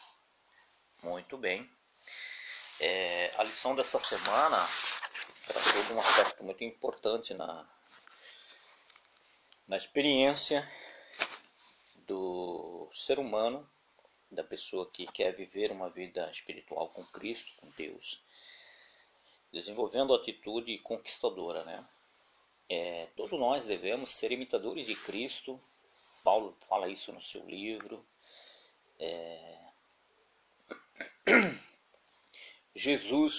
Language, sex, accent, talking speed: Portuguese, male, Brazilian, 85 wpm